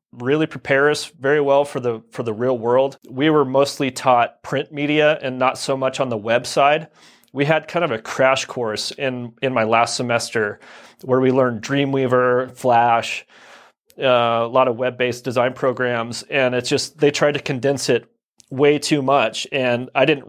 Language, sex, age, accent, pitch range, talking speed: English, male, 30-49, American, 120-145 Hz, 190 wpm